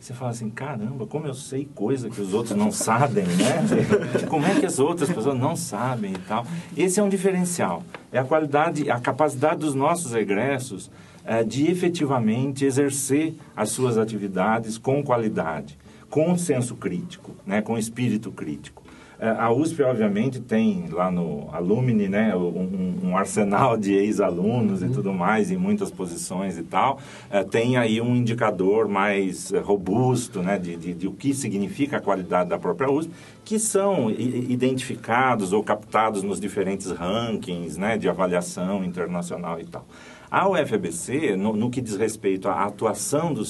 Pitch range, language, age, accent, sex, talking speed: 105-155 Hz, Portuguese, 50-69, Brazilian, male, 160 wpm